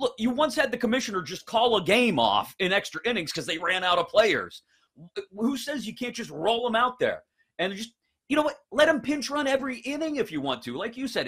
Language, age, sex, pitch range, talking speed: English, 30-49, male, 115-190 Hz, 250 wpm